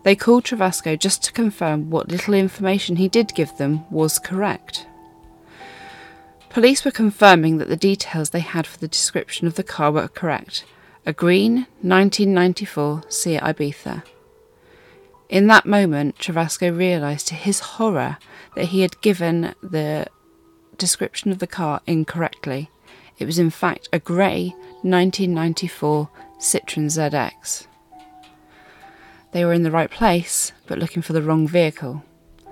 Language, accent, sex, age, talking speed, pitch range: English, British, female, 30-49, 140 wpm, 155-195 Hz